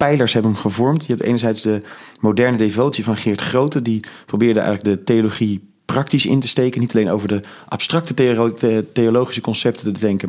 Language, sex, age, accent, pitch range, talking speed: Dutch, male, 30-49, Dutch, 100-120 Hz, 180 wpm